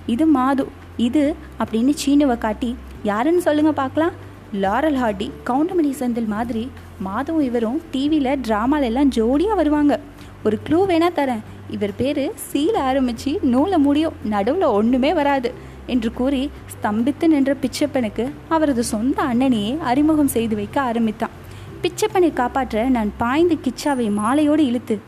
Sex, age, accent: female, 20-39, native